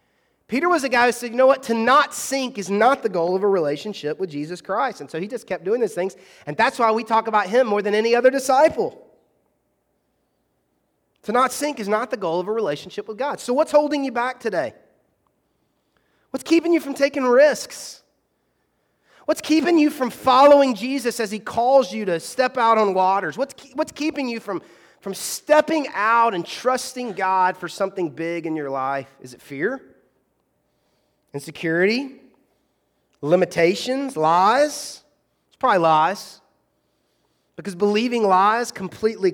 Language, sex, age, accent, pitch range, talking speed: English, male, 30-49, American, 185-255 Hz, 170 wpm